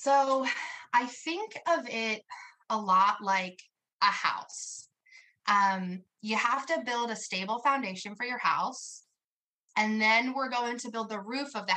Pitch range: 190-240 Hz